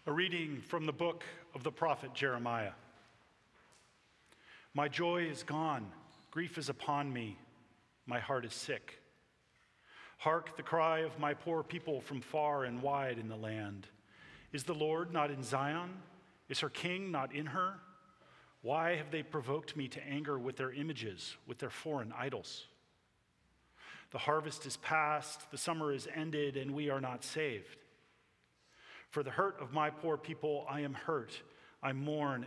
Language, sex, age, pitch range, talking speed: English, male, 40-59, 130-160 Hz, 160 wpm